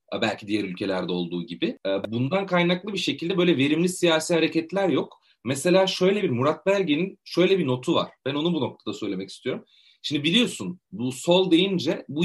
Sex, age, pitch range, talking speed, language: male, 40-59, 130-185 Hz, 170 wpm, Turkish